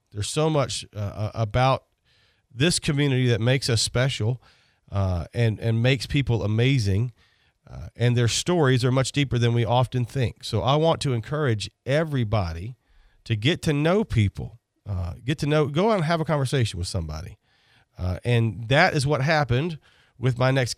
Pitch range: 110-135 Hz